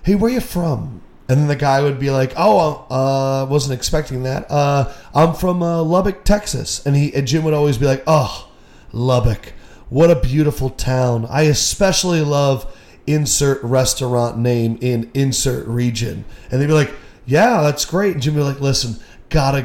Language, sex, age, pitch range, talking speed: English, male, 30-49, 130-160 Hz, 180 wpm